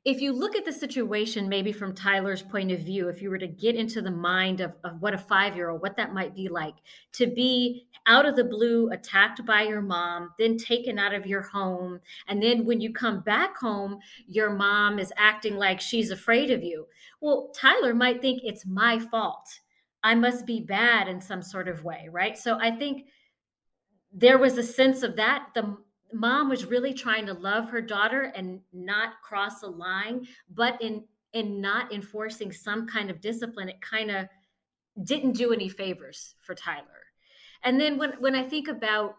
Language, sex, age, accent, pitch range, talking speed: English, female, 30-49, American, 195-235 Hz, 195 wpm